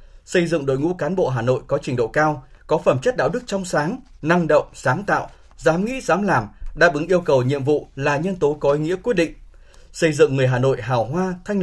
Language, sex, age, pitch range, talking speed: Vietnamese, male, 20-39, 130-175 Hz, 255 wpm